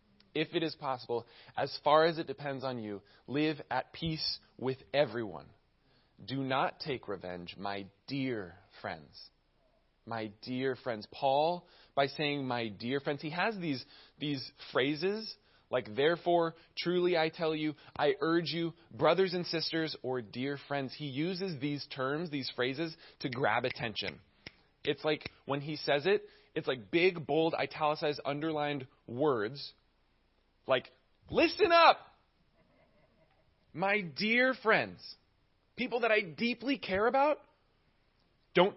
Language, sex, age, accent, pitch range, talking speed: English, male, 20-39, American, 115-165 Hz, 135 wpm